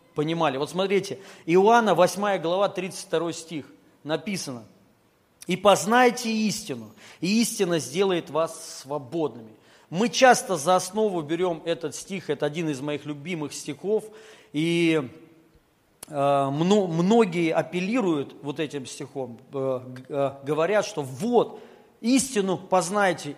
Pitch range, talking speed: 160-230 Hz, 105 wpm